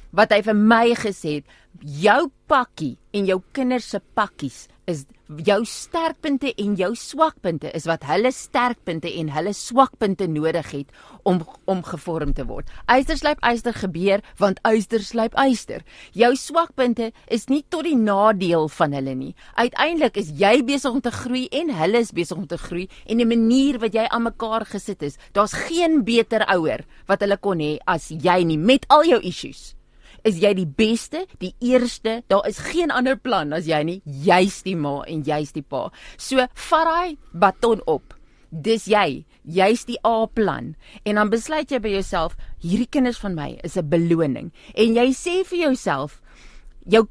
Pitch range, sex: 170-245 Hz, female